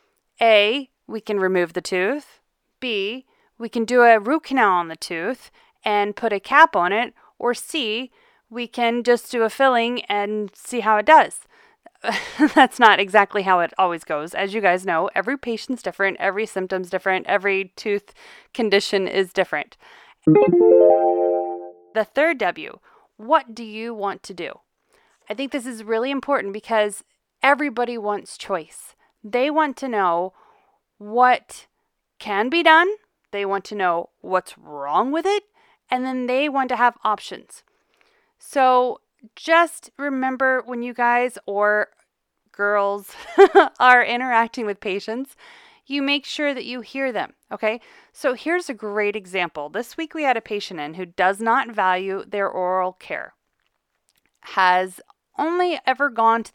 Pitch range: 195-270 Hz